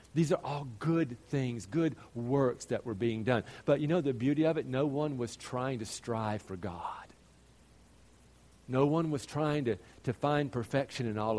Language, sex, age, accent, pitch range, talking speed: English, male, 50-69, American, 115-155 Hz, 190 wpm